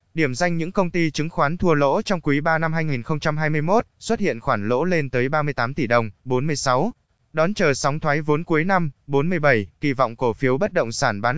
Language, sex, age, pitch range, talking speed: Vietnamese, male, 20-39, 130-160 Hz, 210 wpm